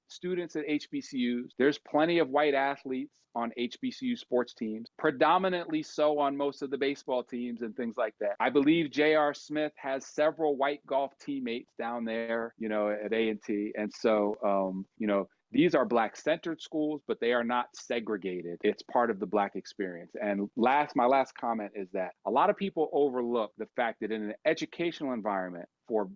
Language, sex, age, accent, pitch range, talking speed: English, male, 40-59, American, 110-150 Hz, 185 wpm